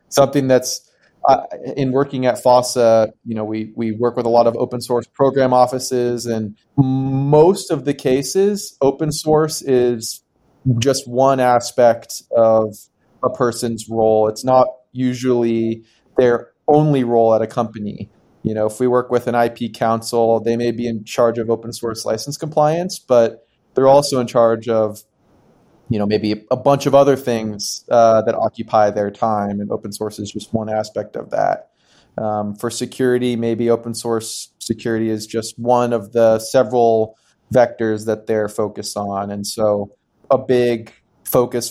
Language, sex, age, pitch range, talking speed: English, male, 30-49, 110-125 Hz, 165 wpm